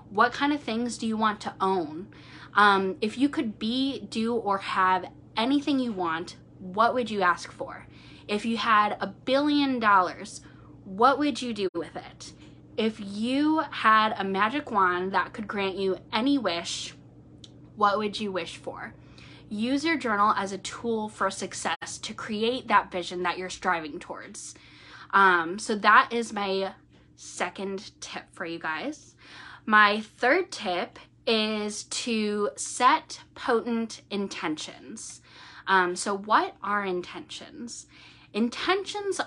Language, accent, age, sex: English, American, 10-29, female